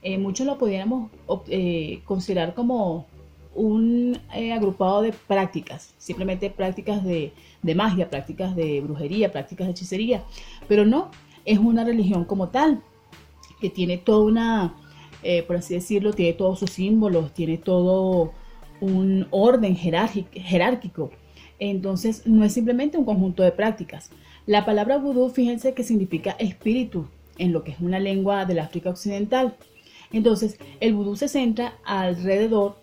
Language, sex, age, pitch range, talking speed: Spanish, female, 30-49, 175-220 Hz, 140 wpm